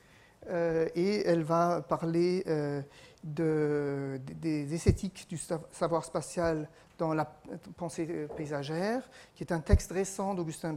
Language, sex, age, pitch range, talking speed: French, male, 40-59, 145-175 Hz, 125 wpm